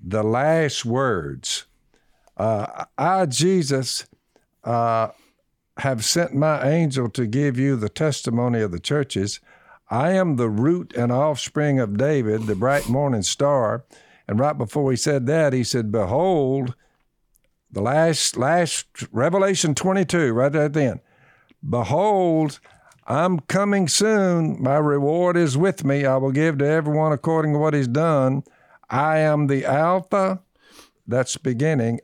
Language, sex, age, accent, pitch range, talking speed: English, male, 60-79, American, 120-155 Hz, 140 wpm